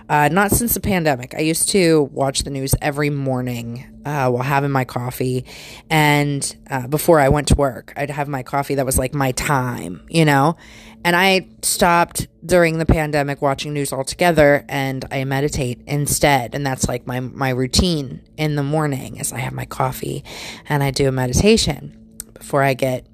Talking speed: 185 wpm